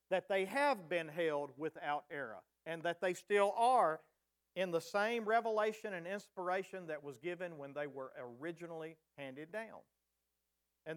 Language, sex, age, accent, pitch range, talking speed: English, male, 50-69, American, 150-195 Hz, 155 wpm